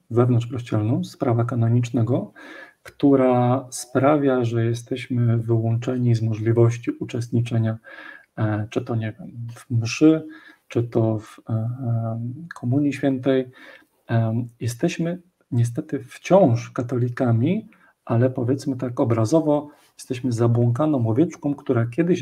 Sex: male